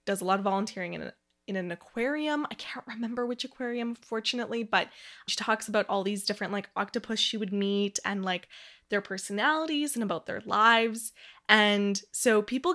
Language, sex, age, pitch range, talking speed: English, female, 20-39, 195-245 Hz, 180 wpm